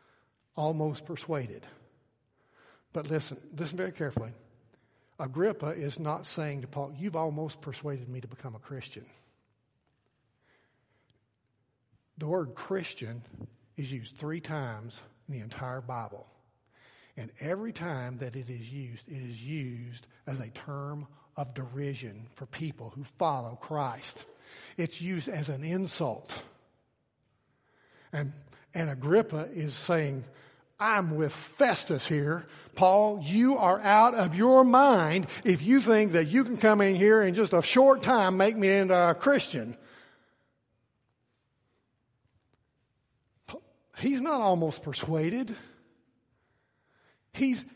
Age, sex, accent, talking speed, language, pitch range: 60-79, male, American, 120 wpm, English, 130-190 Hz